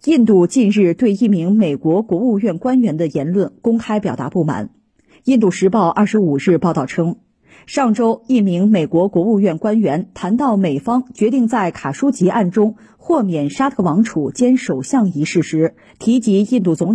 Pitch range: 170-240 Hz